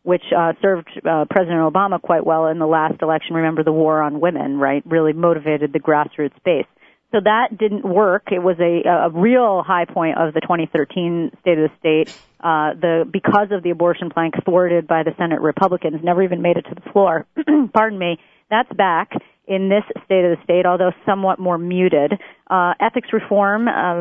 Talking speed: 190 wpm